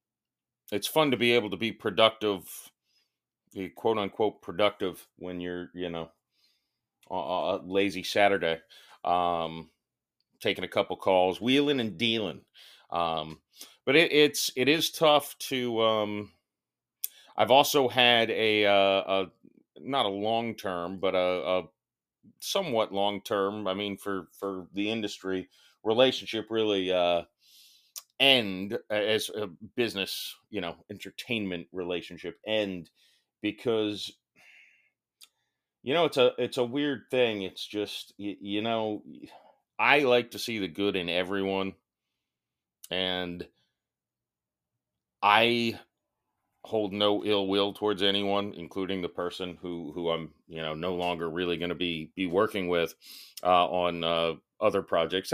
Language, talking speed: English, 130 wpm